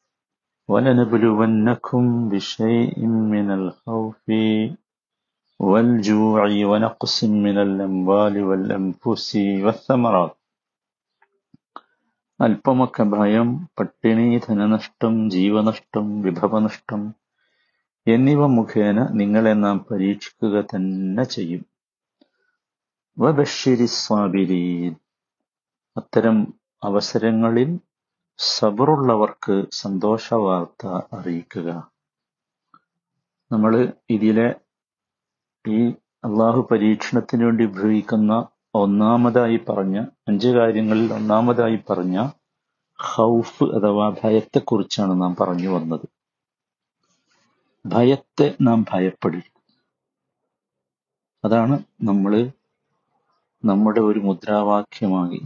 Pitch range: 100-115 Hz